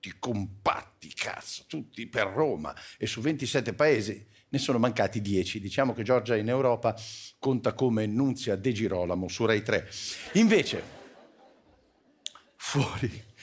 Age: 50-69